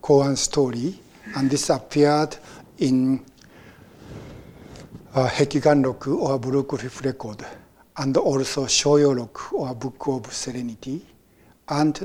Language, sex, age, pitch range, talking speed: English, male, 60-79, 125-140 Hz, 100 wpm